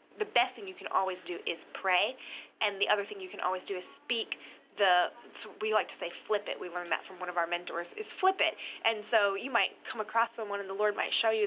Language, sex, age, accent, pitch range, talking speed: English, female, 20-39, American, 185-270 Hz, 260 wpm